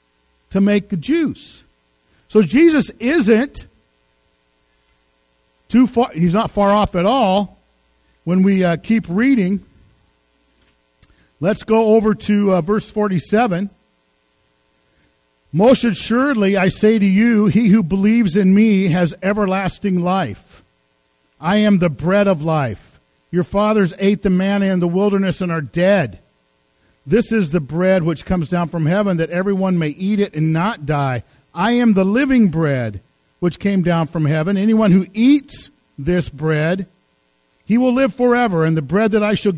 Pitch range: 145-210 Hz